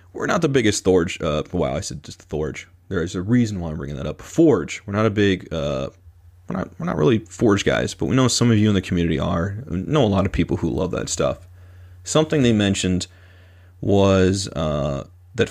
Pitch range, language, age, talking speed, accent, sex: 90-110 Hz, English, 30-49, 235 wpm, American, male